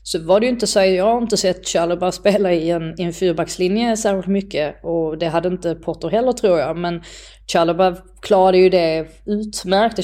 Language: Swedish